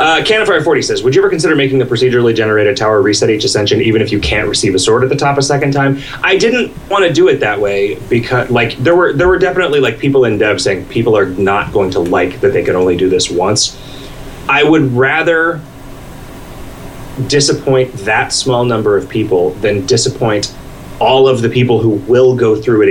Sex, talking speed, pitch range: male, 215 wpm, 115-145 Hz